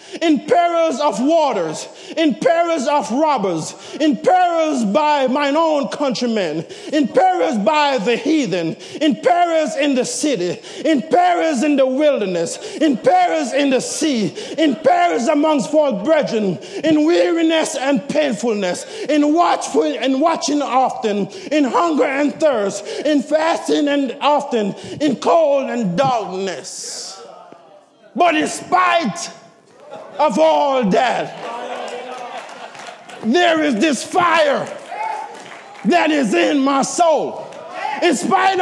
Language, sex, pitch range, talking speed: English, male, 235-315 Hz, 120 wpm